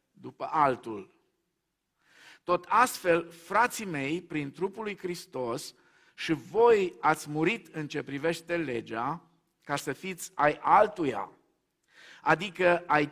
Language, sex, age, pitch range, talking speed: Romanian, male, 50-69, 145-180 Hz, 115 wpm